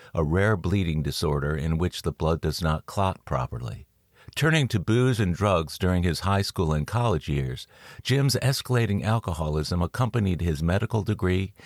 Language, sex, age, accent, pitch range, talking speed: English, male, 50-69, American, 80-110 Hz, 160 wpm